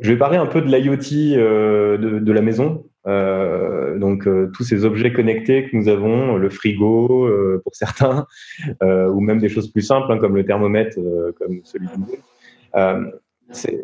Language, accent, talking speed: French, French, 185 wpm